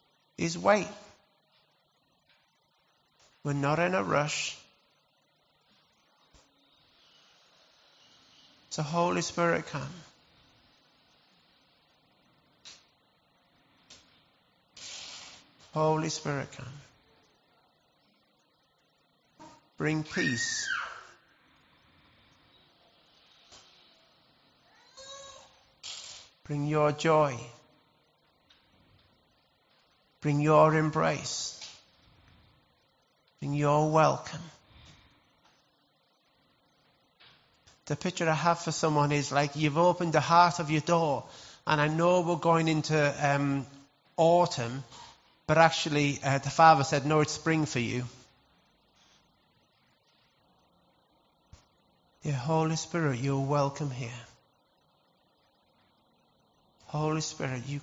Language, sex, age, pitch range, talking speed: English, male, 50-69, 145-160 Hz, 70 wpm